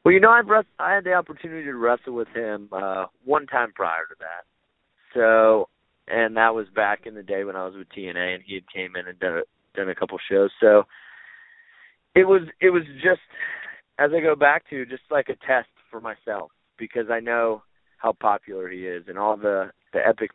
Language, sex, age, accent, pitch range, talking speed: English, male, 30-49, American, 105-135 Hz, 210 wpm